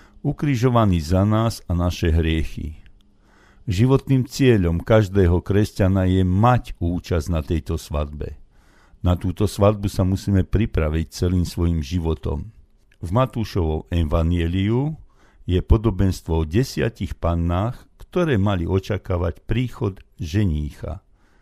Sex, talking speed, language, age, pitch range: male, 105 wpm, Slovak, 60-79, 85-110 Hz